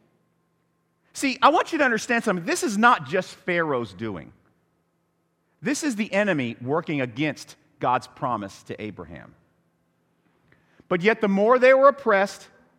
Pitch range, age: 140-220 Hz, 50-69